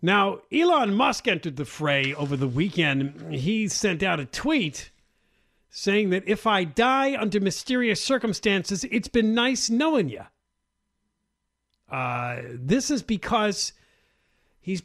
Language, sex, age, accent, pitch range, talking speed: English, male, 50-69, American, 150-215 Hz, 125 wpm